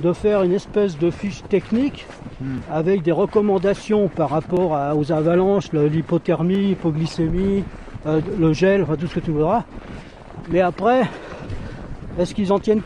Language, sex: French, male